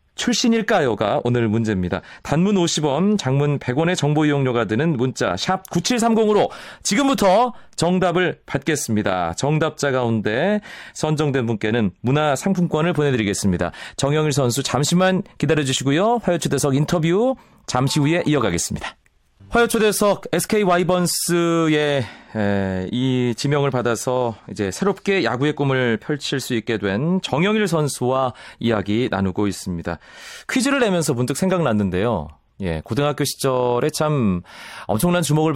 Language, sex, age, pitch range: Korean, male, 30-49, 115-170 Hz